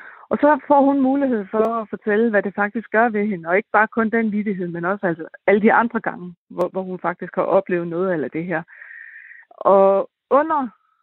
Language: Danish